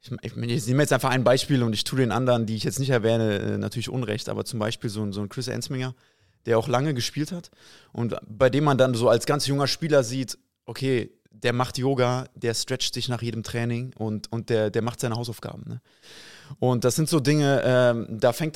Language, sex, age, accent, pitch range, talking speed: German, male, 20-39, German, 115-140 Hz, 225 wpm